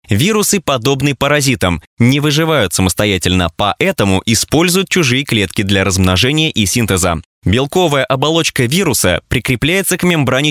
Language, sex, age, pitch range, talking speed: Russian, male, 20-39, 100-150 Hz, 115 wpm